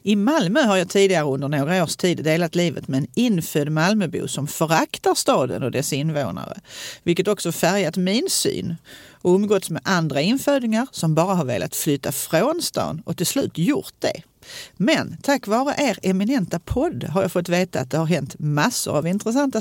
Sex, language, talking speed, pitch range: female, Swedish, 185 wpm, 150-205 Hz